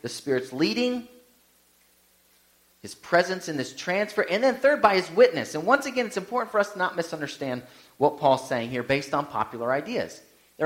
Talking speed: 185 wpm